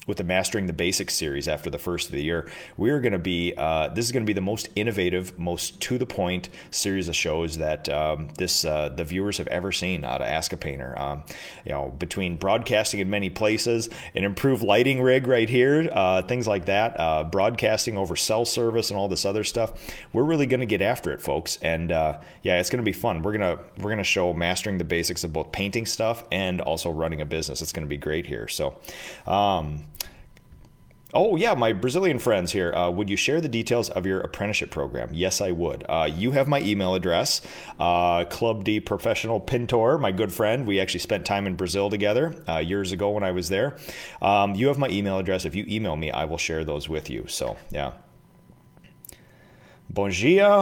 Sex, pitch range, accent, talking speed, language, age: male, 85-115 Hz, American, 220 wpm, English, 30-49